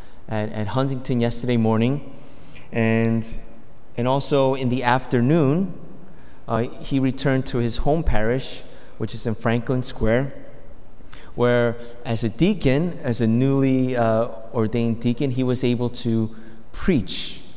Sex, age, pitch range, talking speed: male, 30-49, 115-135 Hz, 130 wpm